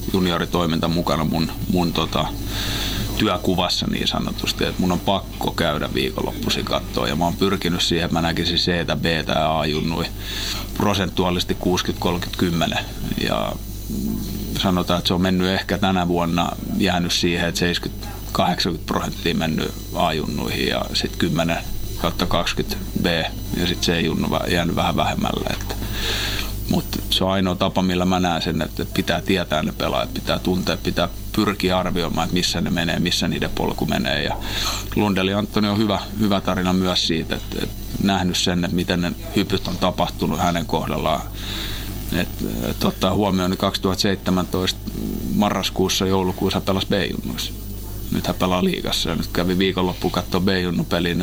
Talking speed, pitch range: 145 wpm, 85-100 Hz